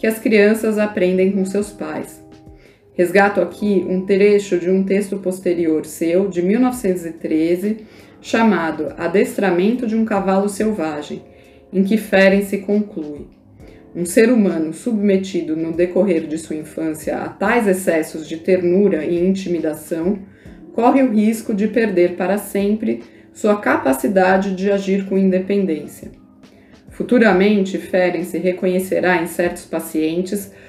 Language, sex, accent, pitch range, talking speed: Portuguese, female, Brazilian, 175-210 Hz, 125 wpm